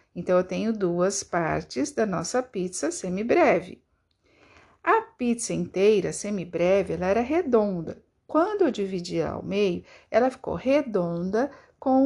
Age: 60-79